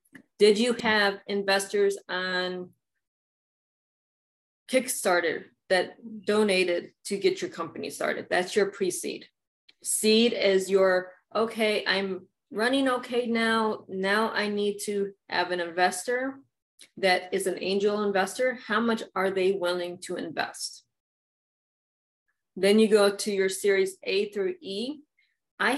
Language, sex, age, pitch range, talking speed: English, female, 20-39, 185-225 Hz, 125 wpm